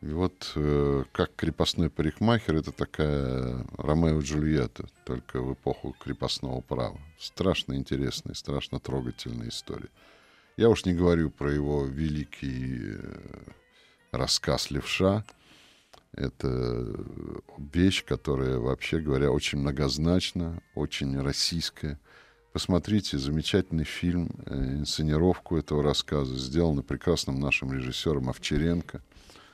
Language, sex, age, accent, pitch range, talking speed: Russian, male, 50-69, native, 70-85 Hz, 100 wpm